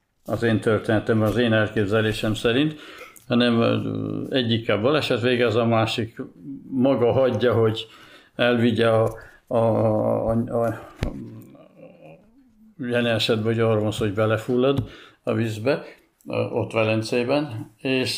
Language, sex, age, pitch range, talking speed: Hungarian, male, 60-79, 110-125 Hz, 90 wpm